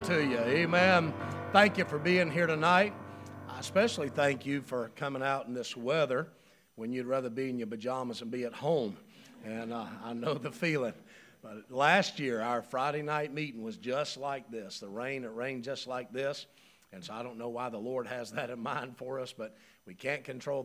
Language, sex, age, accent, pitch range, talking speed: English, male, 50-69, American, 120-135 Hz, 210 wpm